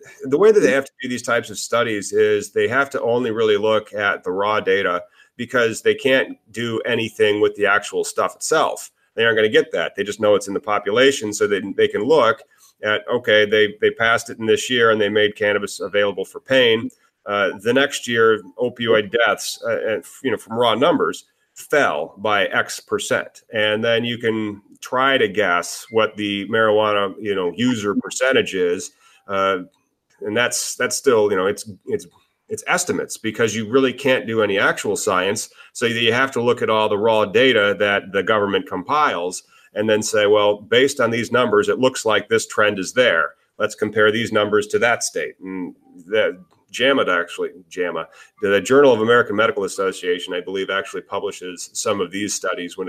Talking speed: 195 wpm